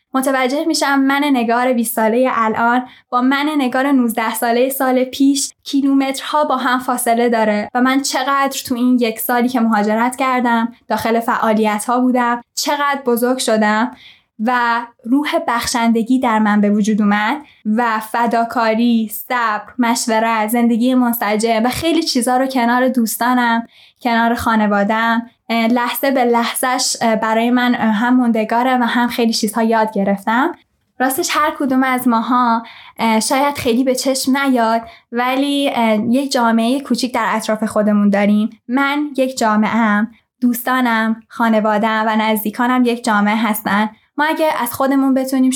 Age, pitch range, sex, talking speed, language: 10-29, 225-260 Hz, female, 140 wpm, Persian